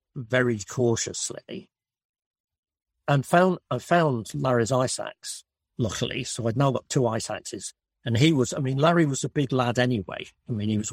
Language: English